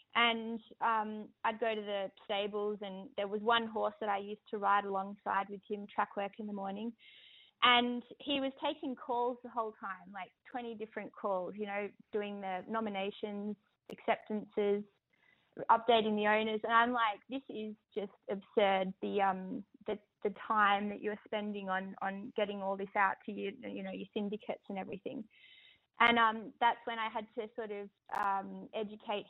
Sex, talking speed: female, 175 wpm